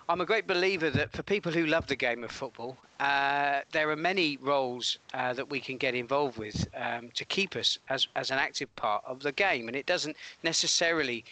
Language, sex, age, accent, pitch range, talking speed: English, male, 40-59, British, 120-160 Hz, 215 wpm